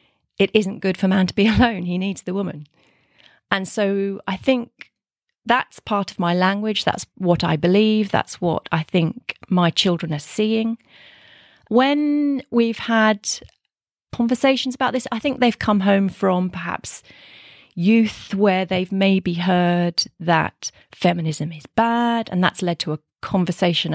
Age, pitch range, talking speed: 30-49, 175-215 Hz, 155 wpm